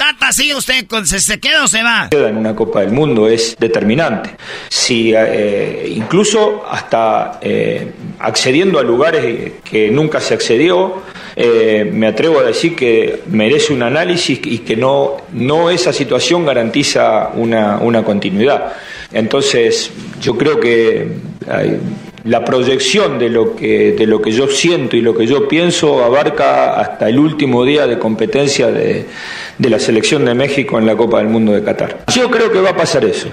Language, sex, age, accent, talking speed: Spanish, male, 40-59, Argentinian, 170 wpm